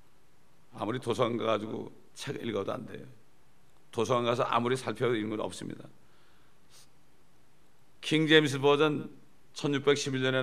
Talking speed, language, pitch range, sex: 100 wpm, English, 120-155 Hz, male